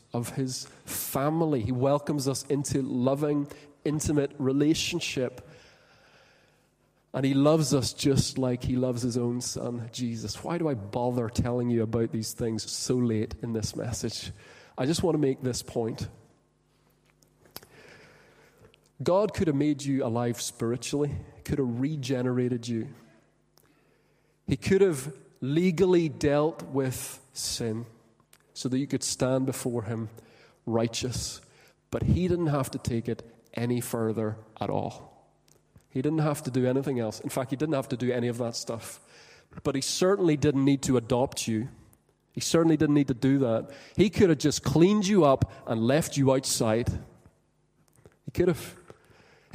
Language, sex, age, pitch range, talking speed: English, male, 30-49, 120-145 Hz, 155 wpm